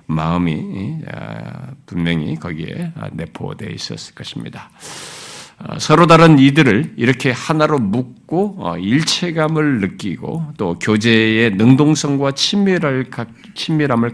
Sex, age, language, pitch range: male, 50-69, Korean, 95-145 Hz